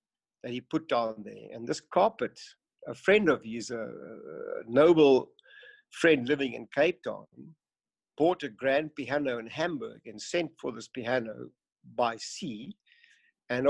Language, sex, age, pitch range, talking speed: English, male, 60-79, 120-170 Hz, 145 wpm